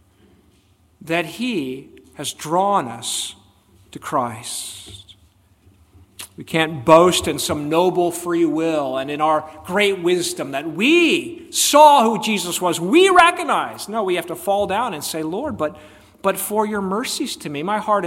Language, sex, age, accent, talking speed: English, male, 40-59, American, 155 wpm